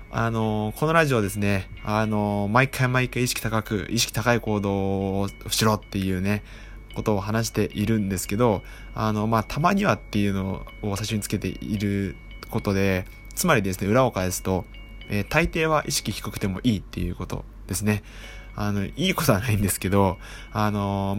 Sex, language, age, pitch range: male, Japanese, 20-39, 100-115 Hz